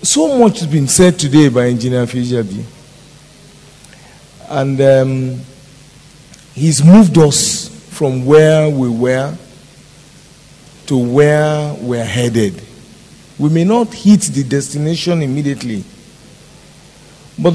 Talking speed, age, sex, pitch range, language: 105 wpm, 50-69, male, 145-190 Hz, English